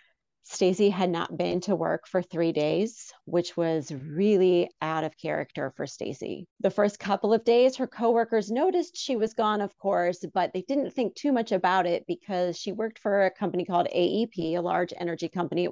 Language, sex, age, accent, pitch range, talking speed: English, female, 40-59, American, 175-215 Hz, 195 wpm